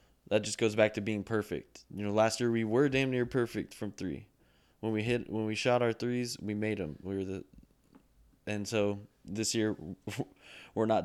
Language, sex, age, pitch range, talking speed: English, male, 20-39, 100-115 Hz, 205 wpm